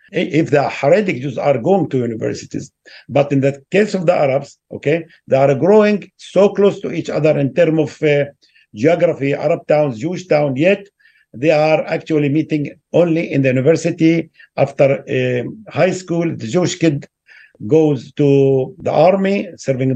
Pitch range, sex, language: 145-185 Hz, male, English